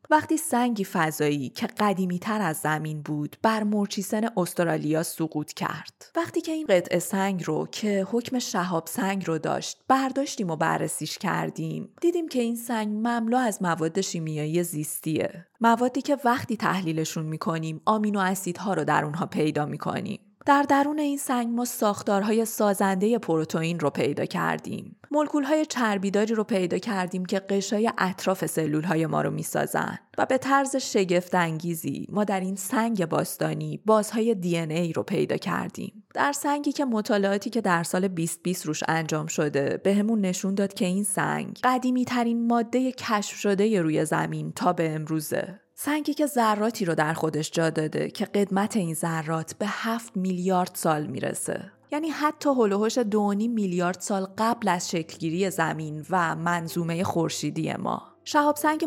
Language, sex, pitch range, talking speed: Persian, female, 165-230 Hz, 155 wpm